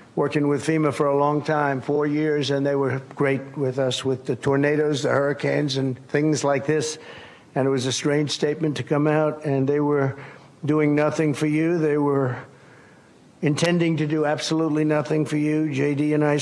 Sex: male